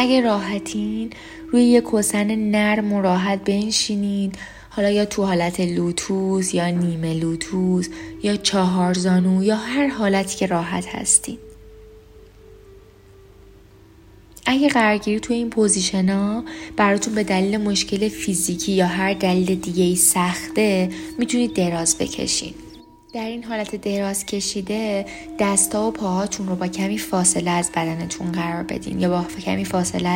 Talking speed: 130 wpm